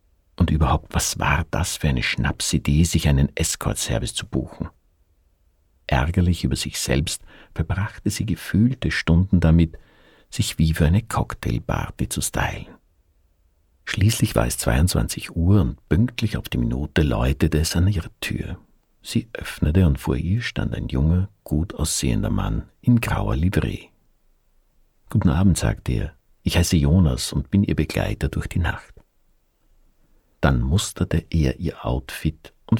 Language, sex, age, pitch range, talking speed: German, male, 50-69, 75-95 Hz, 145 wpm